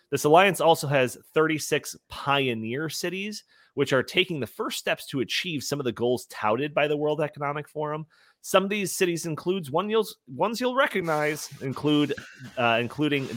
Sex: male